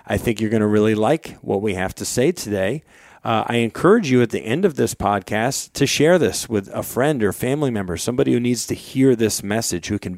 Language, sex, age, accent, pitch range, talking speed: English, male, 40-59, American, 100-125 Hz, 240 wpm